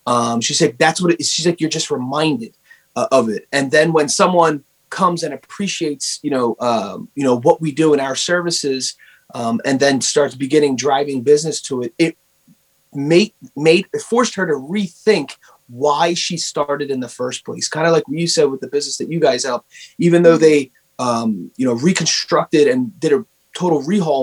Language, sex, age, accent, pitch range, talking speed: English, male, 30-49, American, 140-190 Hz, 205 wpm